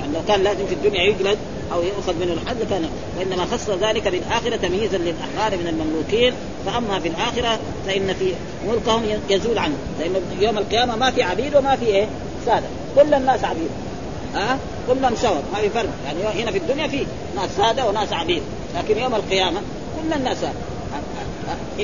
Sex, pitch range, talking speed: female, 195-240 Hz, 175 wpm